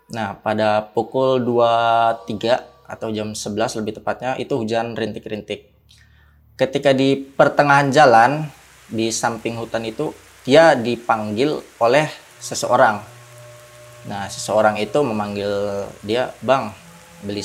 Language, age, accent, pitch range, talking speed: Indonesian, 20-39, native, 105-140 Hz, 105 wpm